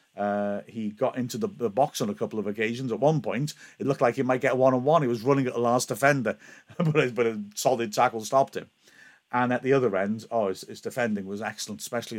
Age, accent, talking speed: 50-69, British, 250 wpm